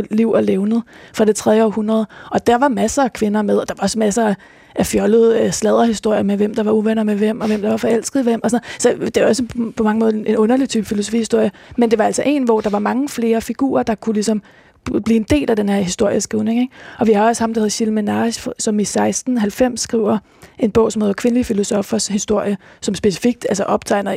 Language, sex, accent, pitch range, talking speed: Danish, female, native, 210-235 Hz, 230 wpm